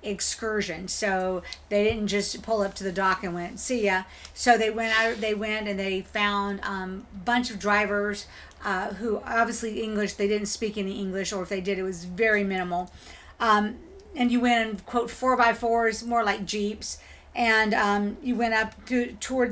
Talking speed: 195 wpm